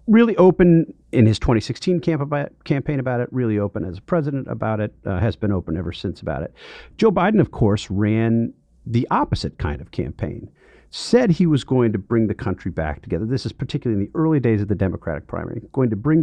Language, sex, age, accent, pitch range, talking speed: English, male, 40-59, American, 100-165 Hz, 220 wpm